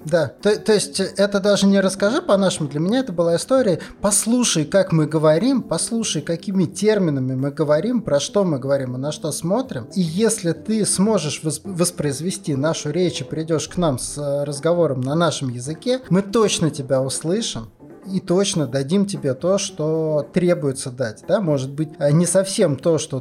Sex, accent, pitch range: male, native, 145-185 Hz